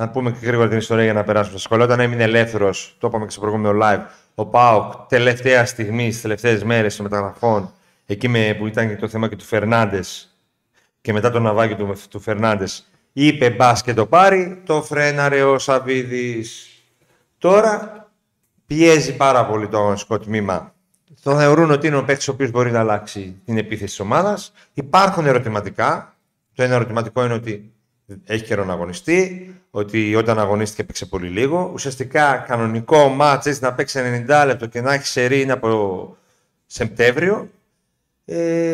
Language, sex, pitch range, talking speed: Greek, male, 110-155 Hz, 165 wpm